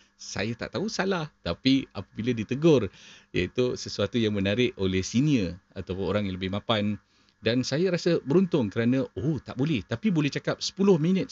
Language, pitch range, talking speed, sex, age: Malay, 100-125 Hz, 165 wpm, male, 40-59